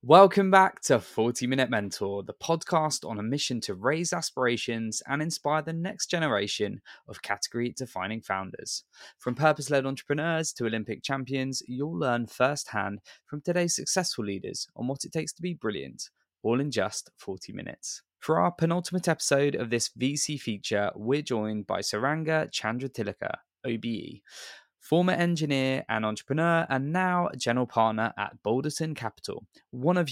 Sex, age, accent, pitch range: male, 20-39, British, 110-155 Hz